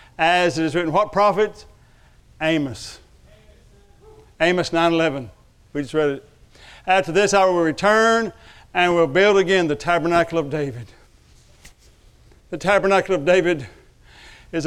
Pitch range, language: 145-205 Hz, English